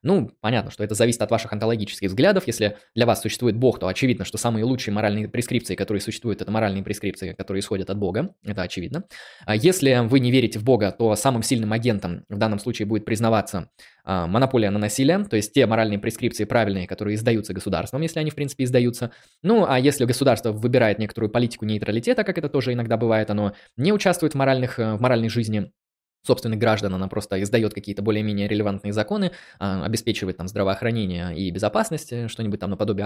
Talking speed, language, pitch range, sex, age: 185 wpm, Russian, 105-130 Hz, male, 20-39